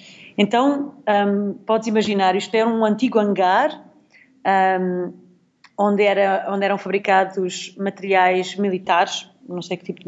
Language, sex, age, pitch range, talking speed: Portuguese, female, 30-49, 185-240 Hz, 115 wpm